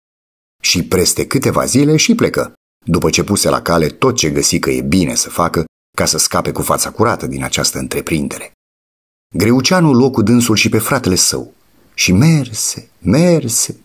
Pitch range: 75-115 Hz